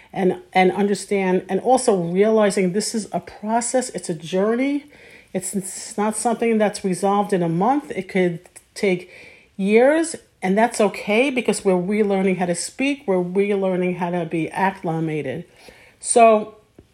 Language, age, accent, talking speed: English, 50-69, American, 150 wpm